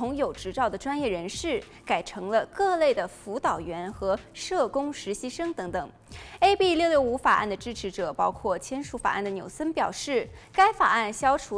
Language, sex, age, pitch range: Chinese, female, 20-39, 210-335 Hz